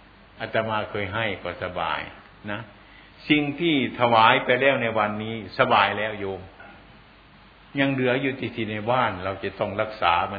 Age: 60-79